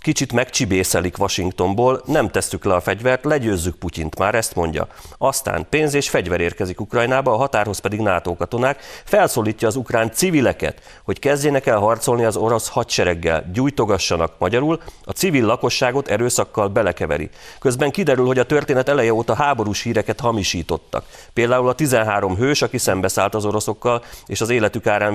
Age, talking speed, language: 30-49, 155 wpm, Hungarian